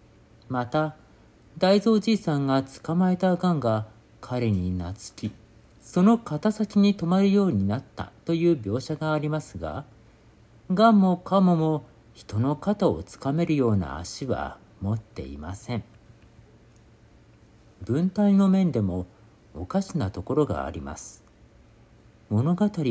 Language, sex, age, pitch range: Japanese, male, 50-69, 110-165 Hz